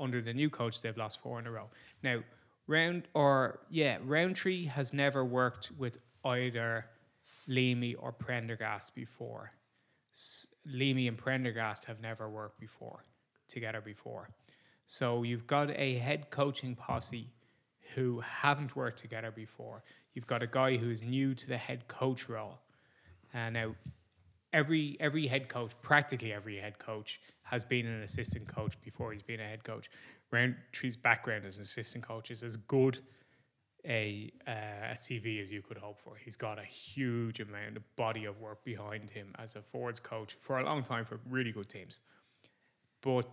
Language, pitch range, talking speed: English, 110-130 Hz, 170 wpm